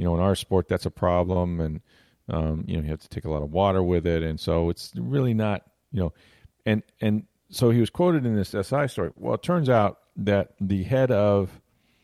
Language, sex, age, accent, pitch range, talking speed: English, male, 40-59, American, 85-105 Hz, 235 wpm